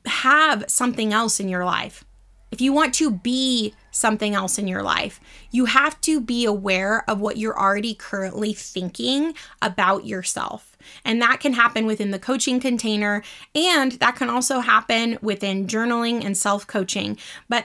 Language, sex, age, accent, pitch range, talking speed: English, female, 20-39, American, 205-255 Hz, 160 wpm